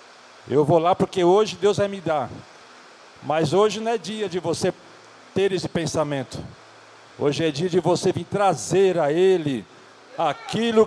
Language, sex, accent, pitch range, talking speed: Portuguese, male, Brazilian, 150-190 Hz, 160 wpm